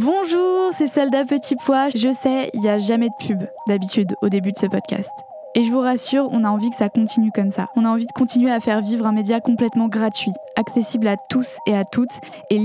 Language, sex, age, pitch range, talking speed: French, female, 20-39, 215-245 Hz, 235 wpm